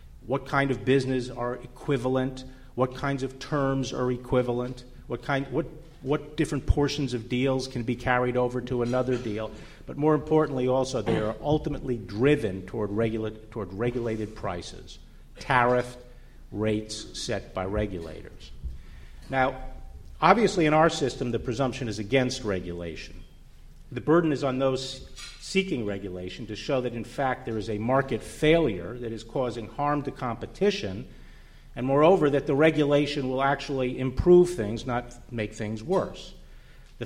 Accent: American